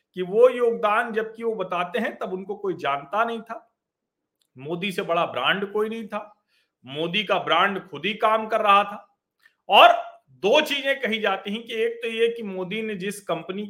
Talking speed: 195 wpm